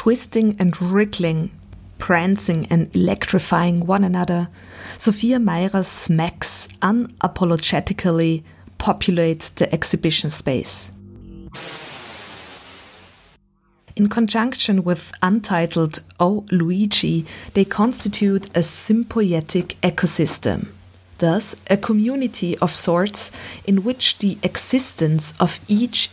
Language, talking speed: German, 85 wpm